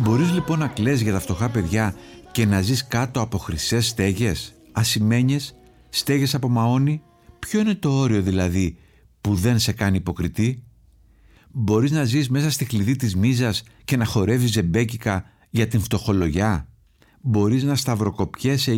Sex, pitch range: male, 100-125 Hz